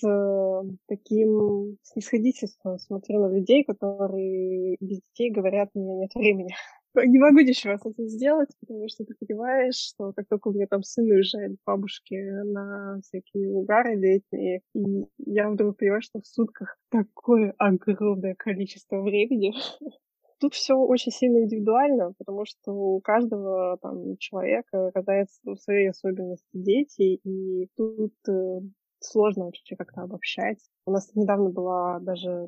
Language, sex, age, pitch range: Russian, female, 20-39, 190-220 Hz